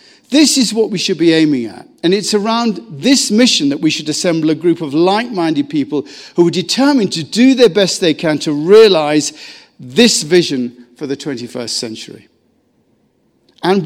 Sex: male